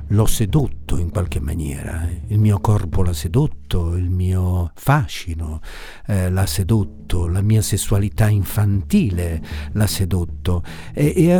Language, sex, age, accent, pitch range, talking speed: Italian, male, 50-69, native, 90-110 Hz, 125 wpm